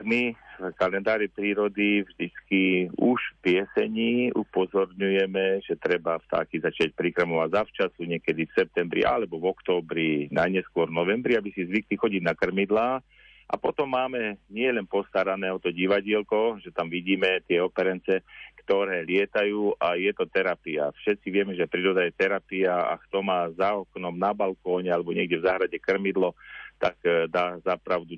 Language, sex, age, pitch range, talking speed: Slovak, male, 40-59, 90-105 Hz, 145 wpm